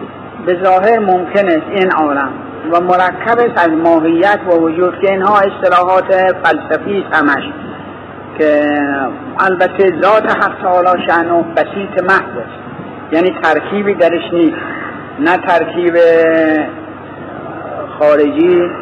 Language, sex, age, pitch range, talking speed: Persian, male, 50-69, 160-220 Hz, 100 wpm